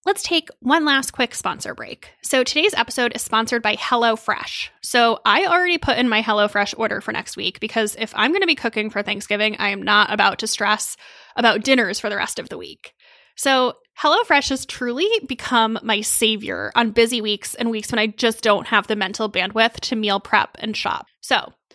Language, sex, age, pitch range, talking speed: English, female, 10-29, 220-295 Hz, 205 wpm